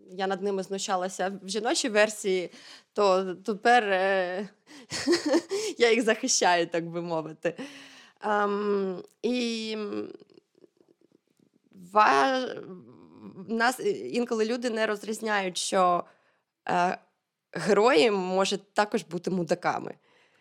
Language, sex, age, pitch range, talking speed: Ukrainian, female, 20-39, 180-225 Hz, 80 wpm